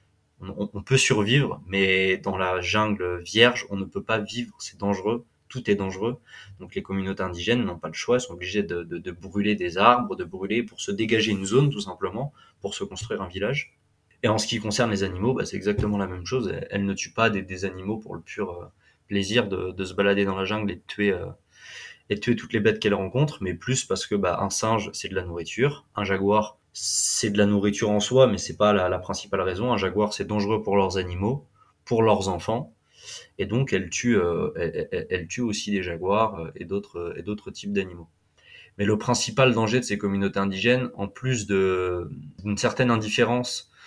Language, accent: French, French